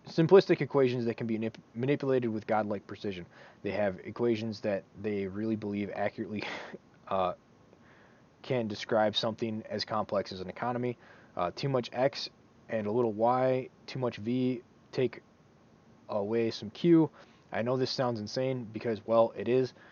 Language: English